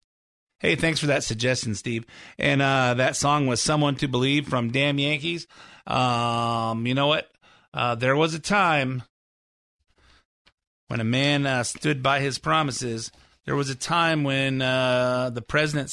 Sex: male